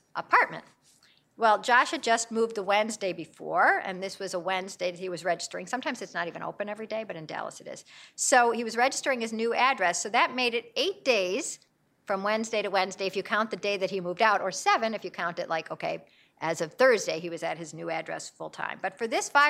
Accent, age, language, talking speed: American, 50-69, English, 240 wpm